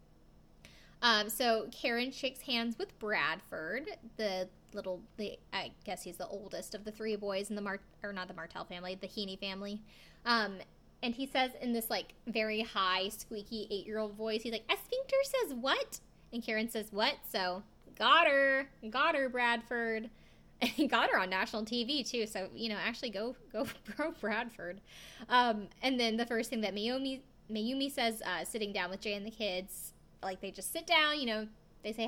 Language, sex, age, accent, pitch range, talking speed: English, female, 20-39, American, 200-245 Hz, 190 wpm